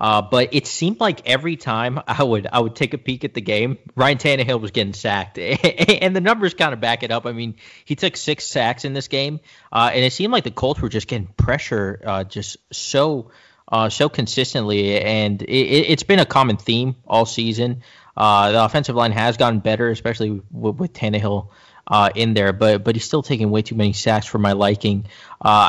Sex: male